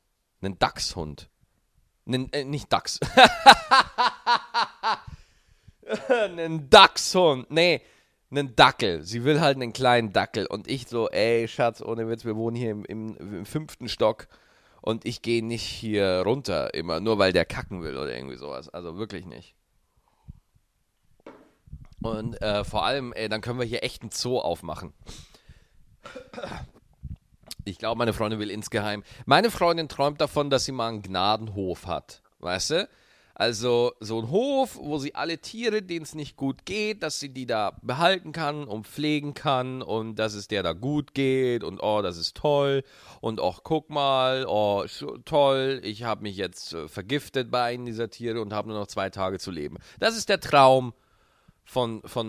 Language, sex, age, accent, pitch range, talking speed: German, male, 40-59, German, 105-140 Hz, 165 wpm